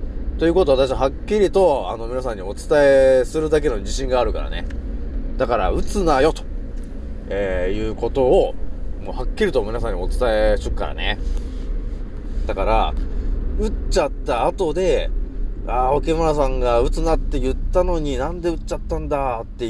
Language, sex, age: Japanese, male, 30-49